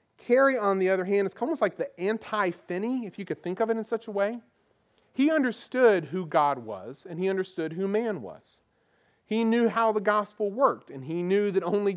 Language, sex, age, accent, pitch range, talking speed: English, male, 40-59, American, 160-210 Hz, 210 wpm